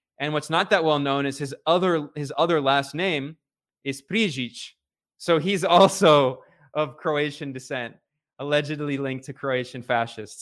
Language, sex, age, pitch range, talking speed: English, male, 20-39, 130-160 Hz, 150 wpm